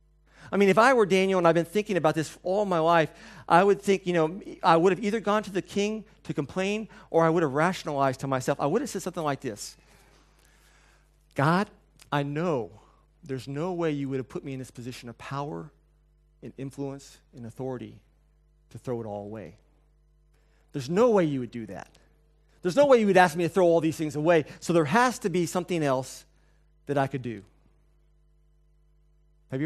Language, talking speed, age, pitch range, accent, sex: English, 205 wpm, 40-59, 145-175 Hz, American, male